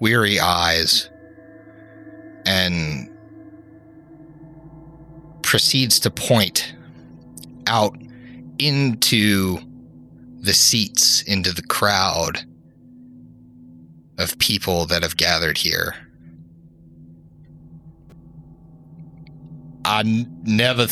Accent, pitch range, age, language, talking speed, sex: American, 80-125 Hz, 30-49, English, 60 wpm, male